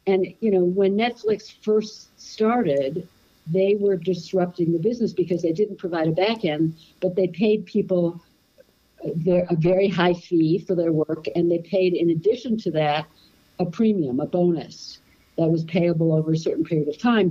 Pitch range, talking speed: 155-190 Hz, 175 wpm